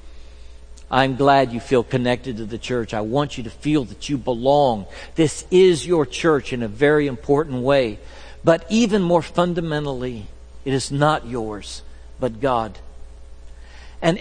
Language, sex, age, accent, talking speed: English, male, 60-79, American, 150 wpm